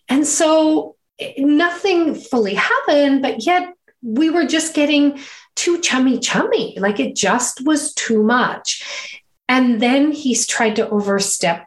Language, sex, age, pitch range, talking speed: English, female, 40-59, 205-285 Hz, 135 wpm